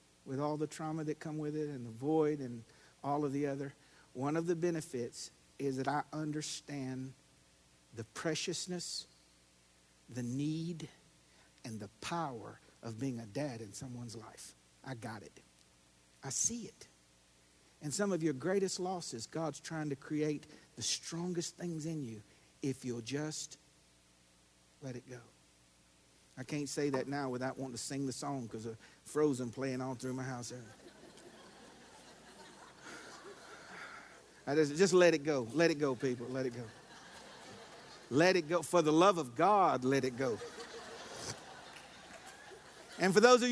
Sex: male